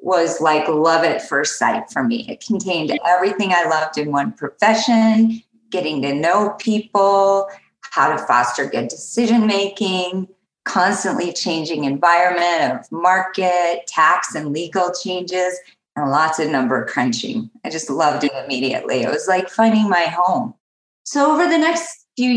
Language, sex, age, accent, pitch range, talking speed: English, female, 30-49, American, 170-235 Hz, 150 wpm